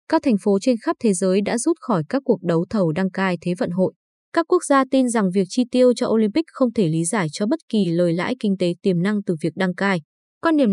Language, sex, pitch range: Vietnamese, female, 190-250 Hz